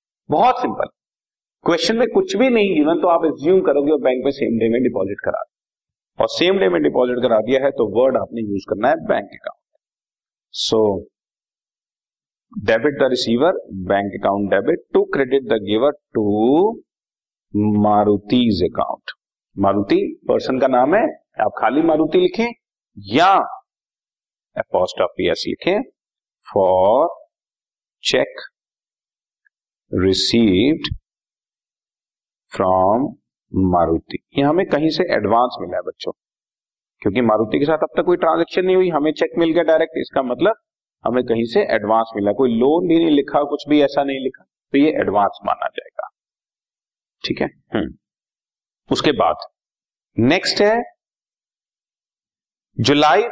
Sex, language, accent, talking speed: male, Hindi, native, 135 wpm